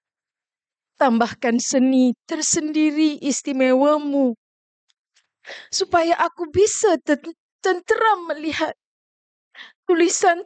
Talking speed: 65 wpm